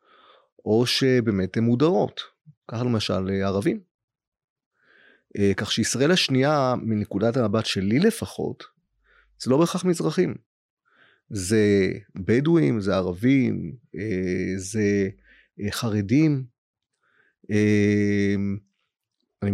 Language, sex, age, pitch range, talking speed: Hebrew, male, 30-49, 105-130 Hz, 75 wpm